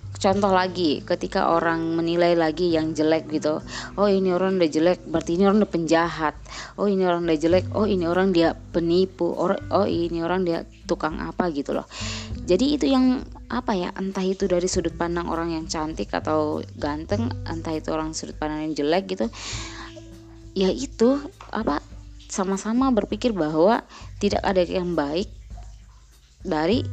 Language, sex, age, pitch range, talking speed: Indonesian, female, 20-39, 150-190 Hz, 160 wpm